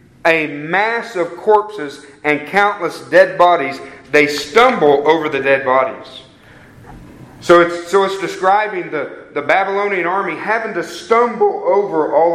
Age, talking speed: 40-59, 135 wpm